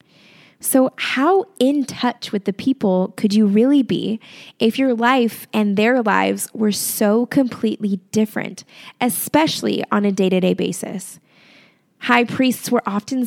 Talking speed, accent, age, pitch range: 135 wpm, American, 20-39, 200-245 Hz